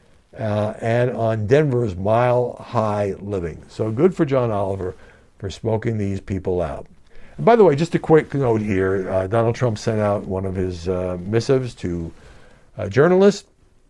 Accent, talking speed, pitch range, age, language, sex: American, 155 wpm, 105-155 Hz, 60-79, English, male